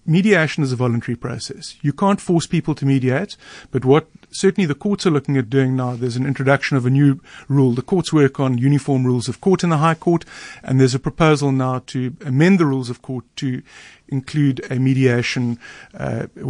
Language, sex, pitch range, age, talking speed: English, male, 130-170 Hz, 50-69, 205 wpm